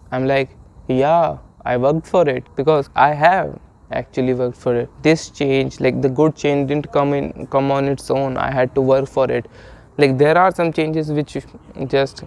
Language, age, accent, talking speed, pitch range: English, 20-39, Indian, 190 wpm, 135-170 Hz